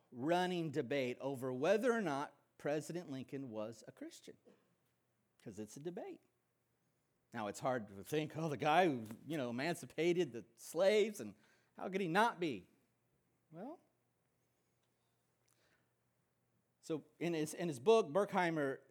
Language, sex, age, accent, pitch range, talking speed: English, male, 40-59, American, 140-210 Hz, 135 wpm